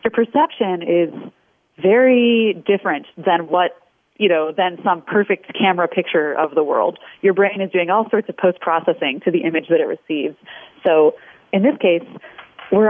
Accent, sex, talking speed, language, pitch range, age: American, female, 170 wpm, English, 175-215 Hz, 30-49